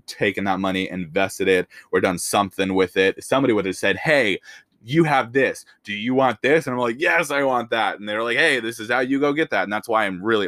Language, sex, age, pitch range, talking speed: English, male, 20-39, 90-105 Hz, 265 wpm